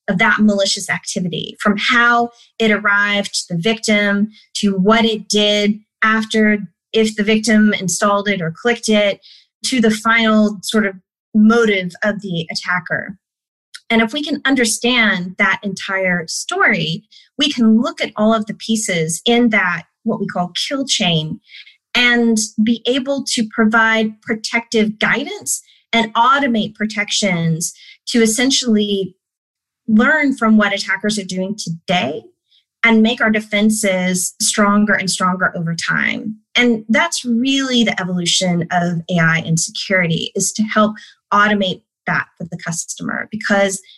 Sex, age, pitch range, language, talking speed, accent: female, 20-39, 190-225 Hz, English, 140 wpm, American